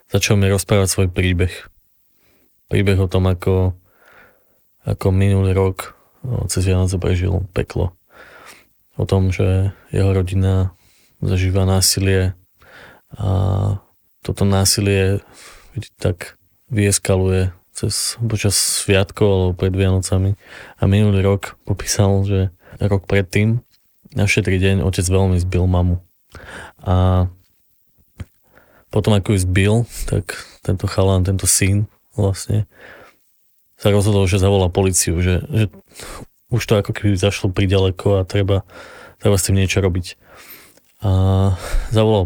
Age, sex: 20-39, male